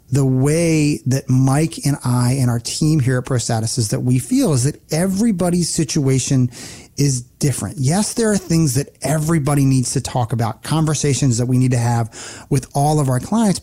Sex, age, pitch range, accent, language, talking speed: male, 30-49, 130-160 Hz, American, English, 190 wpm